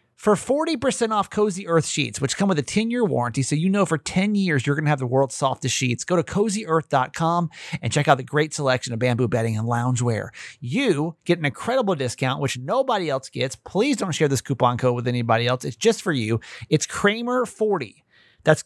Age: 30-49